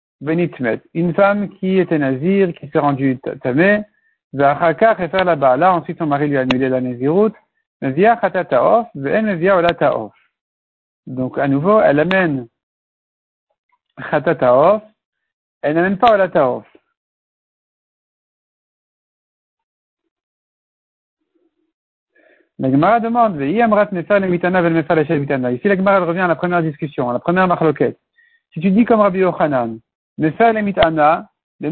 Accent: French